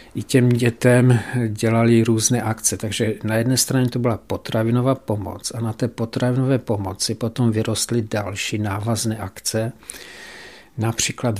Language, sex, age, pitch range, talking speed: Czech, male, 50-69, 110-120 Hz, 130 wpm